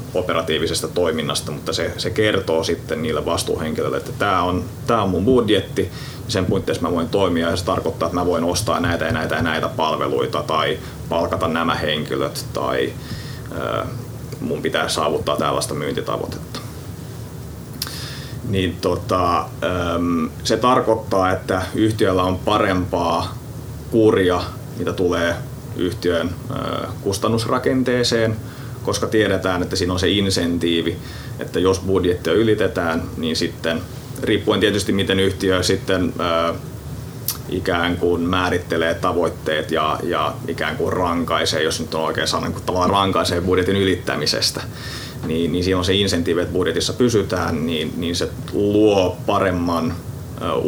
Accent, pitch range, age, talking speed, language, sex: native, 90-110 Hz, 30-49, 125 wpm, Finnish, male